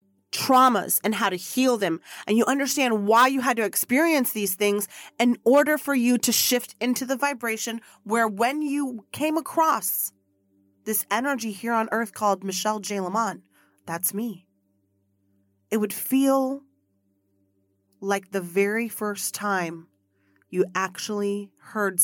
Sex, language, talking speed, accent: female, English, 140 wpm, American